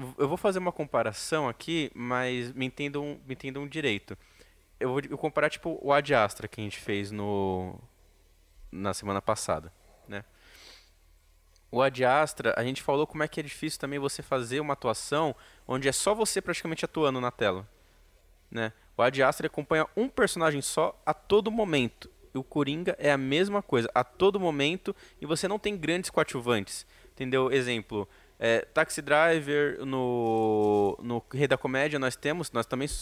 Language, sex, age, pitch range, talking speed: Portuguese, male, 20-39, 115-155 Hz, 170 wpm